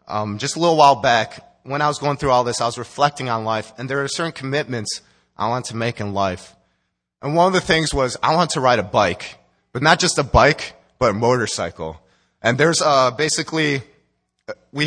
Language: English